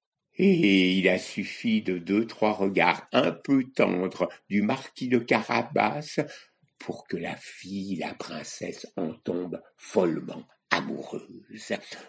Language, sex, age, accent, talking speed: French, male, 60-79, French, 125 wpm